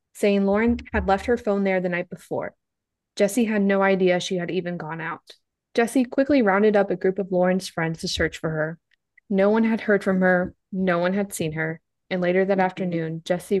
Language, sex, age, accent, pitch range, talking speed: English, female, 20-39, American, 175-205 Hz, 210 wpm